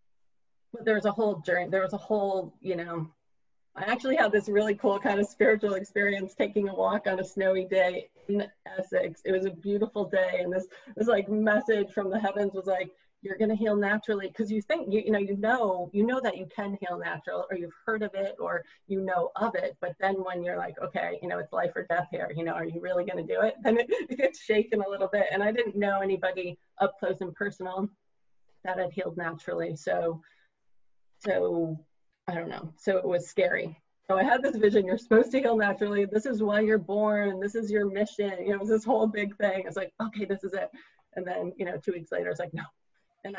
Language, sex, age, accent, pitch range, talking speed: English, female, 30-49, American, 180-215 Hz, 235 wpm